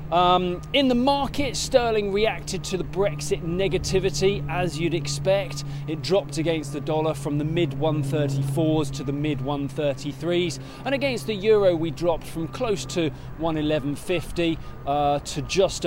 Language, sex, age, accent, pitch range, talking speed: English, male, 20-39, British, 145-185 Hz, 135 wpm